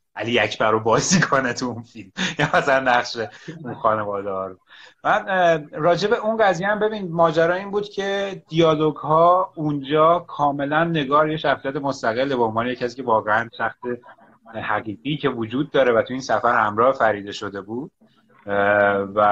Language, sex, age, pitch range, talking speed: Persian, male, 30-49, 115-170 Hz, 155 wpm